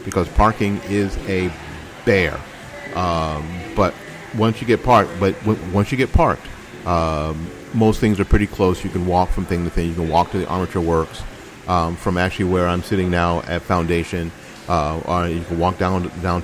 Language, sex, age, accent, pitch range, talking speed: English, male, 40-59, American, 85-100 Hz, 195 wpm